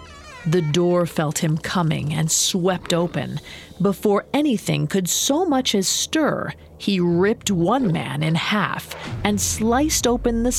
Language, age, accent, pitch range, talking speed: English, 40-59, American, 160-230 Hz, 140 wpm